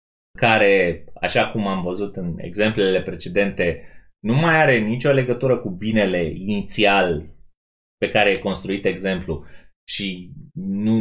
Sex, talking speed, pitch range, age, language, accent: male, 125 wpm, 100-155 Hz, 20-39, Romanian, native